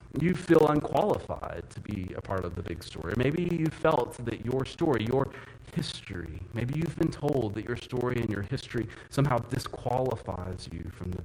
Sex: male